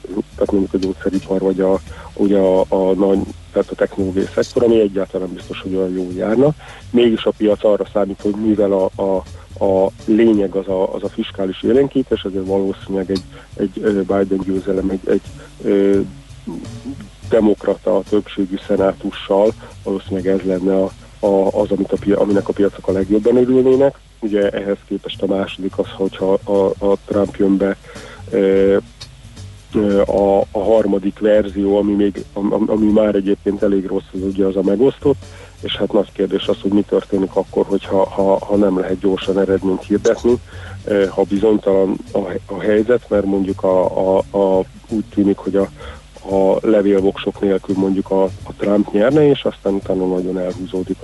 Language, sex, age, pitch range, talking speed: Hungarian, male, 40-59, 95-105 Hz, 160 wpm